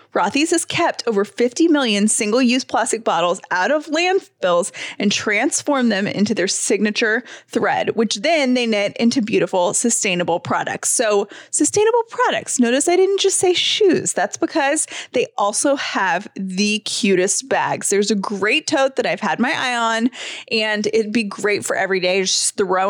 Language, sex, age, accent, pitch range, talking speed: English, female, 20-39, American, 205-290 Hz, 170 wpm